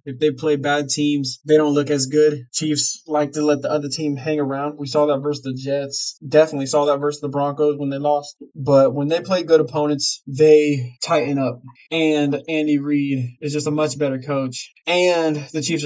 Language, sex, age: English, male, 20-39